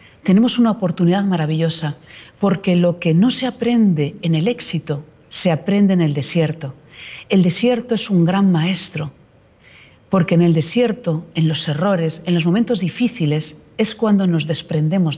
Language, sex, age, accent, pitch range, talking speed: Spanish, female, 40-59, Spanish, 160-220 Hz, 155 wpm